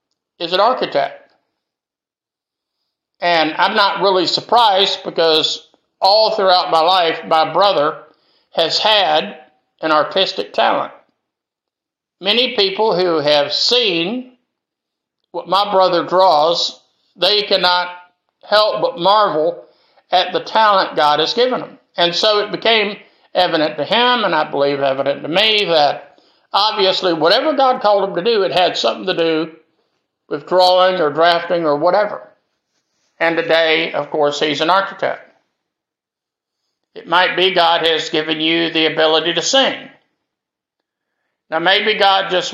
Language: English